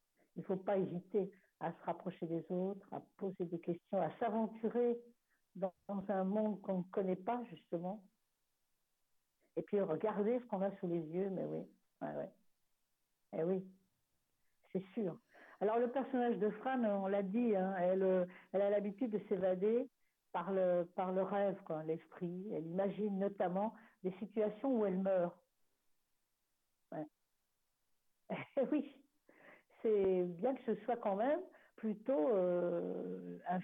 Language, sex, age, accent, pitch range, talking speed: French, female, 60-79, French, 175-220 Hz, 150 wpm